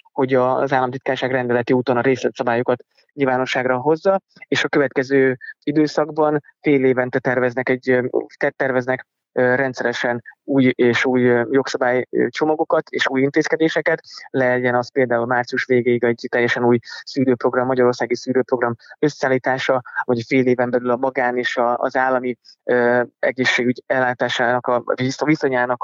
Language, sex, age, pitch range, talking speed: Hungarian, male, 20-39, 125-140 Hz, 125 wpm